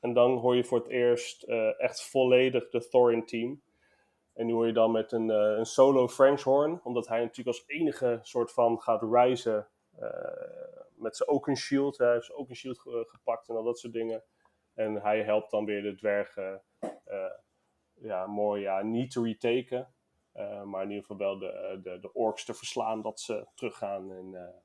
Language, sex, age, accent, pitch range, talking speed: Dutch, male, 20-39, Dutch, 110-135 Hz, 200 wpm